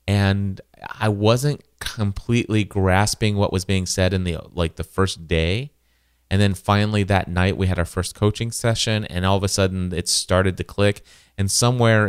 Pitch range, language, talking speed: 85-100 Hz, English, 185 wpm